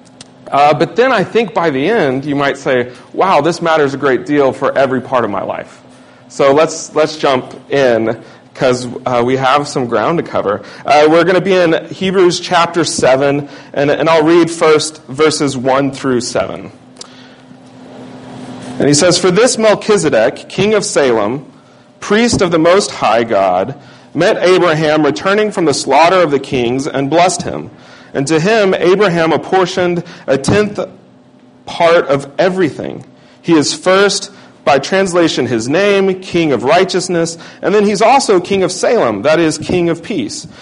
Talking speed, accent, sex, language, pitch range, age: 165 wpm, American, male, English, 135-185 Hz, 40-59